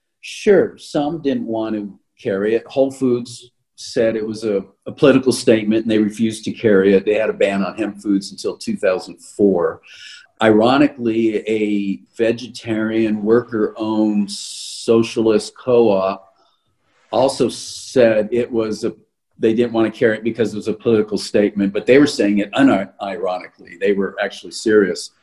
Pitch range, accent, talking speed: 105-130 Hz, American, 150 wpm